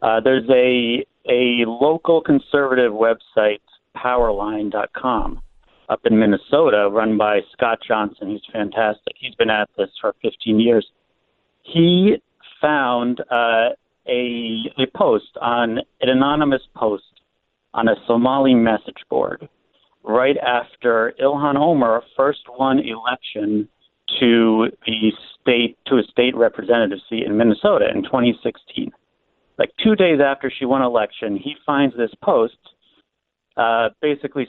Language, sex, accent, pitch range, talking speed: English, male, American, 110-140 Hz, 125 wpm